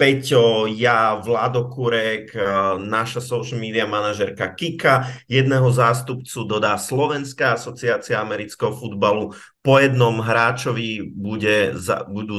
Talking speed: 95 wpm